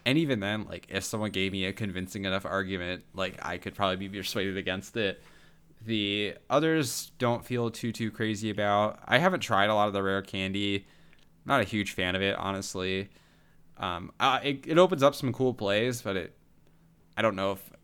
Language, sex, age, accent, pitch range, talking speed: English, male, 20-39, American, 95-125 Hz, 200 wpm